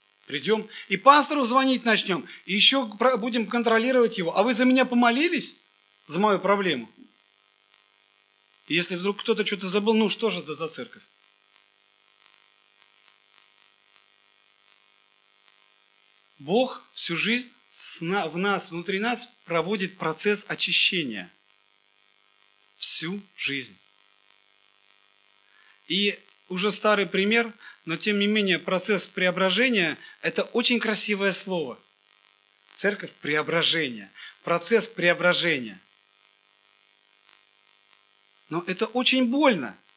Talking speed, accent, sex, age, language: 95 wpm, native, male, 40-59, Russian